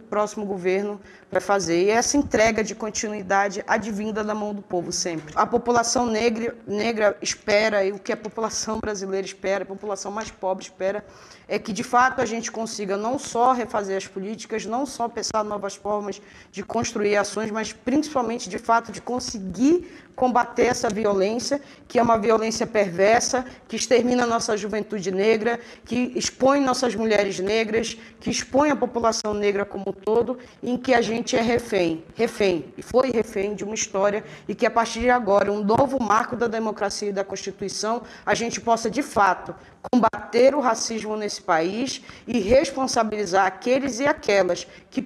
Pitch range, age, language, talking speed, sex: 205-240 Hz, 20-39, Portuguese, 170 wpm, female